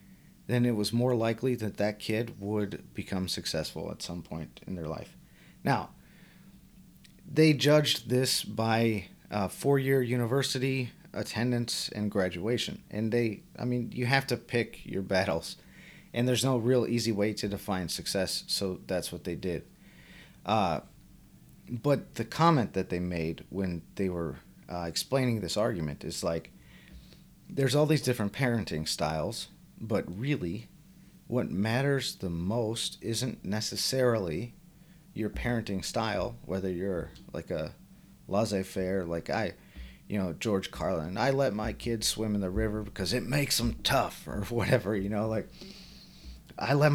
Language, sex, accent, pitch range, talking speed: English, male, American, 100-130 Hz, 150 wpm